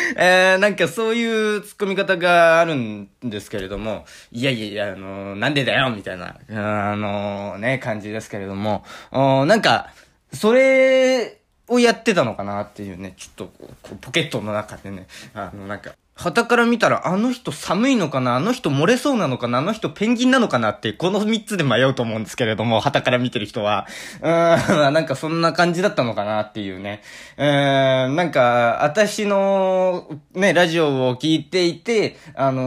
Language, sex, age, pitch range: Japanese, male, 20-39, 115-190 Hz